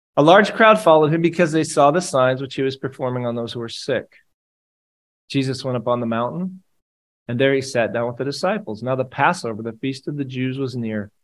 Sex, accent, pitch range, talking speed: male, American, 115-150 Hz, 230 wpm